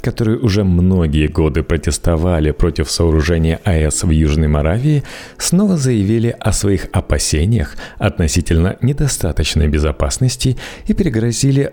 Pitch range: 80-110 Hz